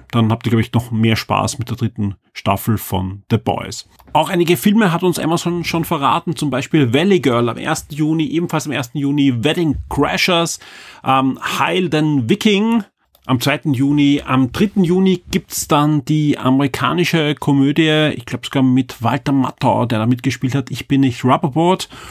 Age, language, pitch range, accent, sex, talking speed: 40-59, German, 130-160 Hz, German, male, 180 wpm